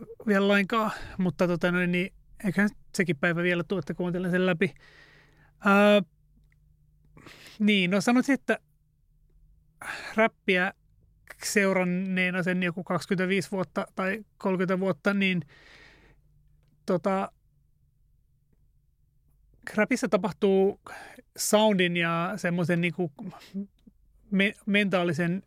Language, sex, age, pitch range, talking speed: Finnish, male, 30-49, 175-200 Hz, 85 wpm